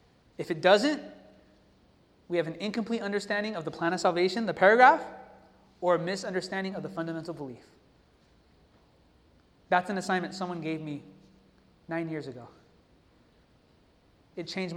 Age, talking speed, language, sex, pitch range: 20-39, 135 wpm, English, male, 165-220 Hz